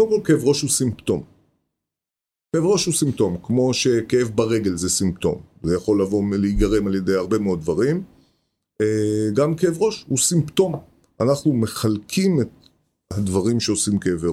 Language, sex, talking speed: Hebrew, male, 140 wpm